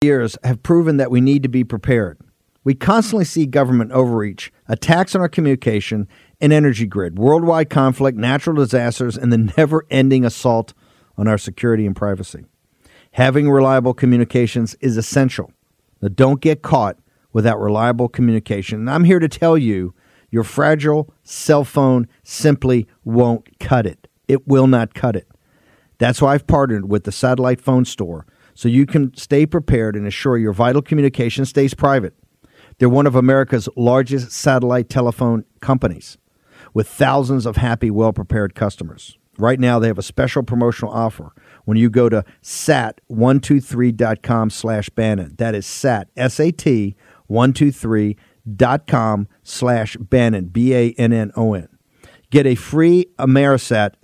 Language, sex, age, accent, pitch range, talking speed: English, male, 50-69, American, 110-135 Hz, 140 wpm